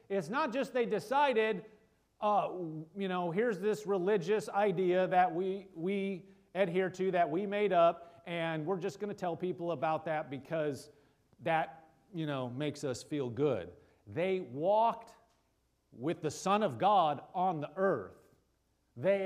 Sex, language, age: male, English, 40-59